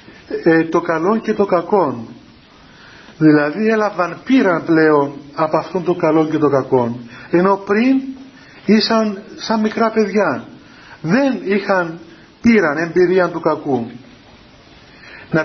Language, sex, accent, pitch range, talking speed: Greek, male, native, 155-200 Hz, 115 wpm